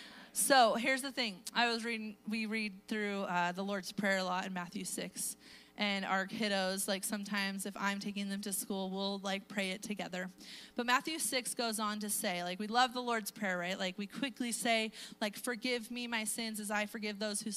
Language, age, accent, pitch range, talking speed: English, 30-49, American, 200-245 Hz, 215 wpm